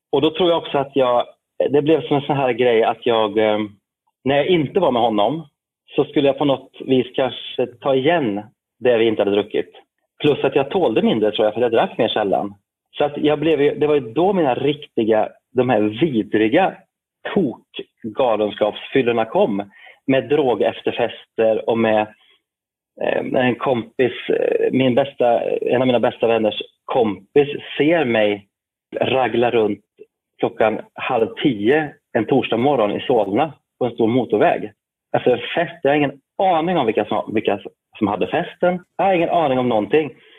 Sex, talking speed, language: male, 175 wpm, Swedish